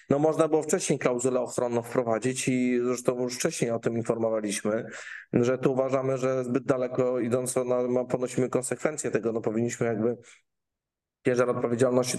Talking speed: 150 wpm